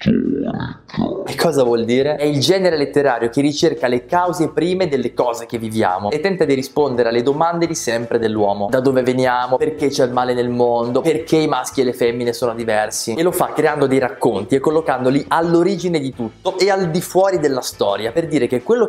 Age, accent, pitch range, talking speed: 20-39, native, 120-165 Hz, 205 wpm